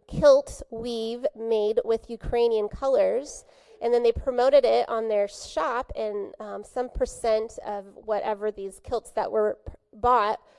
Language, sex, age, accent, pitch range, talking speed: English, female, 30-49, American, 210-255 Hz, 145 wpm